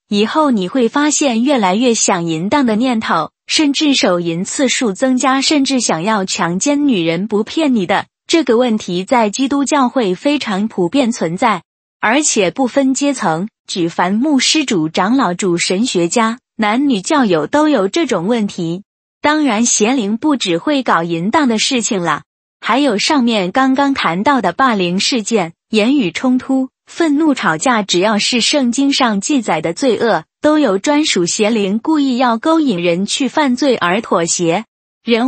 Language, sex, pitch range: Chinese, female, 195-280 Hz